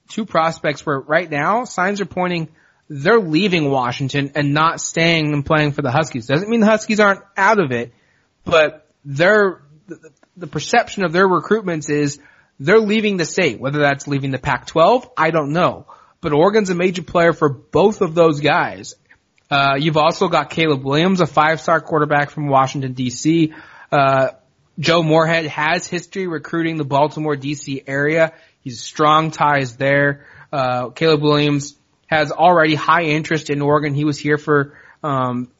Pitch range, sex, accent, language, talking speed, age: 145-165 Hz, male, American, English, 165 wpm, 20-39